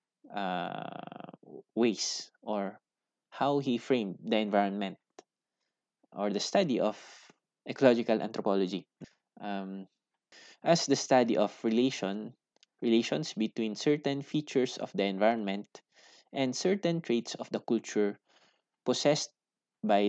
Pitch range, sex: 100-130 Hz, male